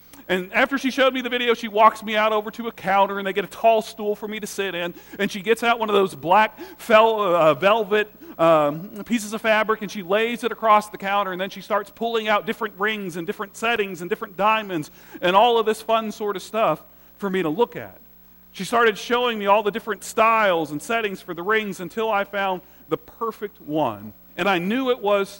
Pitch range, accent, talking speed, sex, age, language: 165-220 Hz, American, 225 wpm, male, 40-59, English